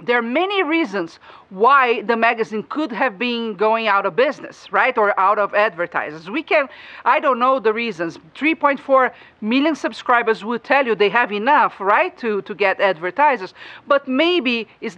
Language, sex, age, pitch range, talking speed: English, female, 40-59, 215-290 Hz, 170 wpm